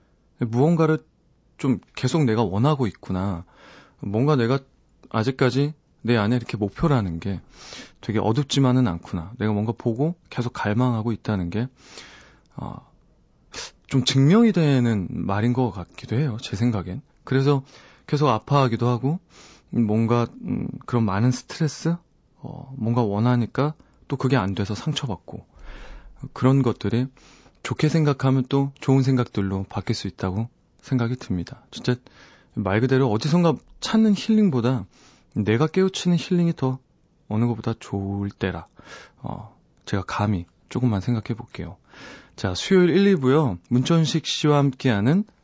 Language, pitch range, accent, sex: Korean, 105-140 Hz, native, male